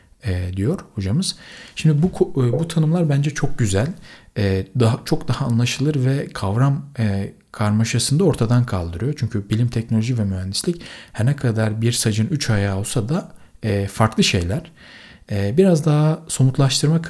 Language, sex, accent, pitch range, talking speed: Turkish, male, native, 110-145 Hz, 135 wpm